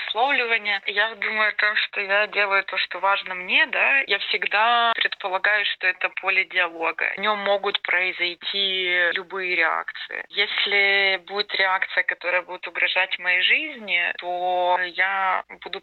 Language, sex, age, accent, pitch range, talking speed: Ukrainian, female, 20-39, native, 175-205 Hz, 135 wpm